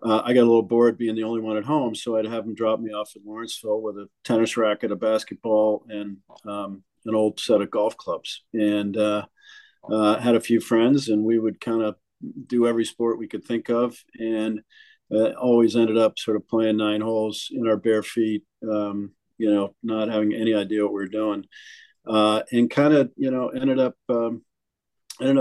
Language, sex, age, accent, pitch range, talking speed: English, male, 50-69, American, 110-120 Hz, 210 wpm